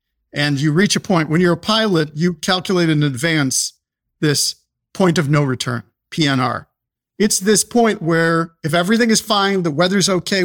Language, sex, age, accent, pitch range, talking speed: English, male, 50-69, American, 160-205 Hz, 170 wpm